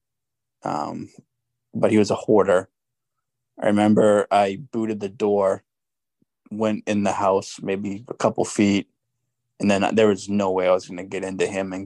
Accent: American